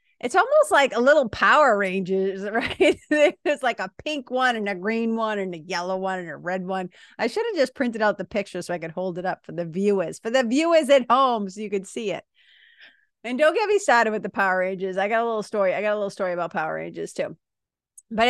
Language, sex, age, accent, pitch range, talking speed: English, female, 30-49, American, 185-235 Hz, 250 wpm